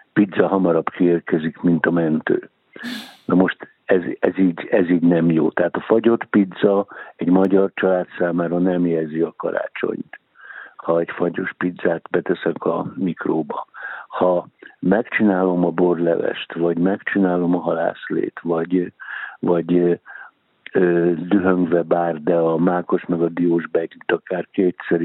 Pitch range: 85-95 Hz